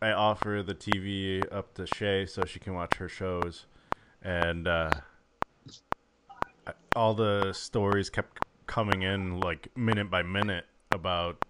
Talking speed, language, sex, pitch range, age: 135 wpm, English, male, 90-110 Hz, 20-39